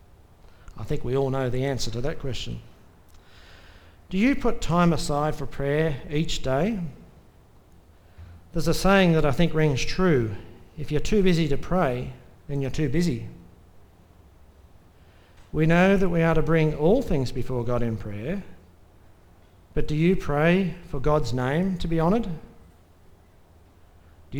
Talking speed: 150 wpm